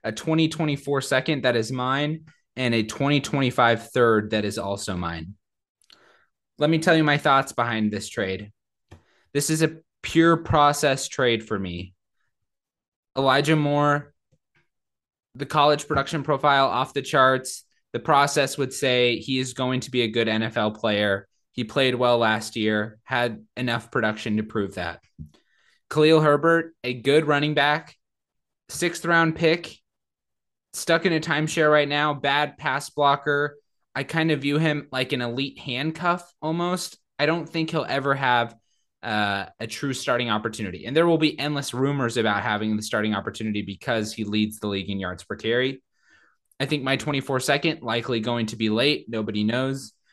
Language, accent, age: English, American, 20-39